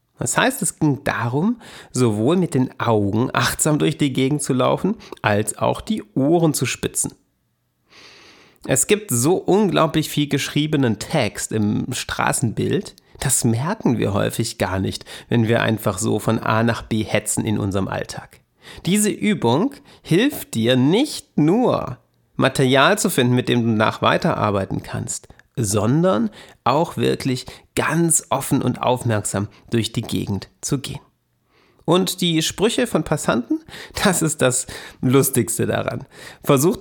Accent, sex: German, male